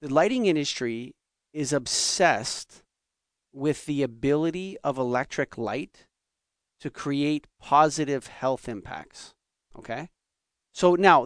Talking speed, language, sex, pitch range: 100 wpm, English, male, 120-145 Hz